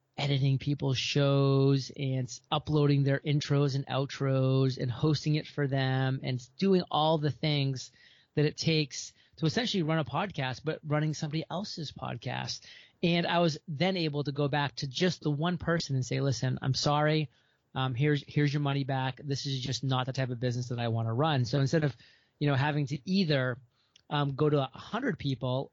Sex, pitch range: male, 130-160 Hz